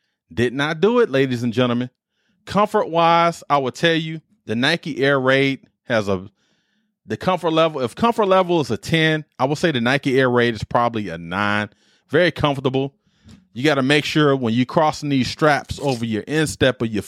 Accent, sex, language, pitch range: American, male, English, 115-160 Hz